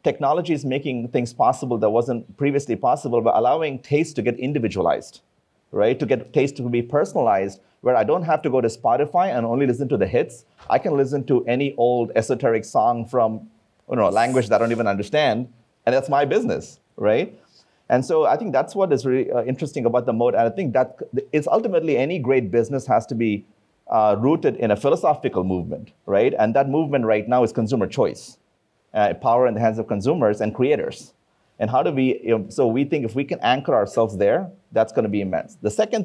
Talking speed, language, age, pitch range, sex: 210 wpm, English, 30-49, 115-140 Hz, male